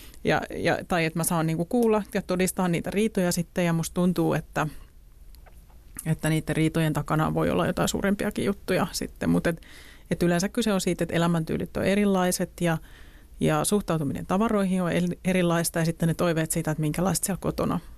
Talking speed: 175 wpm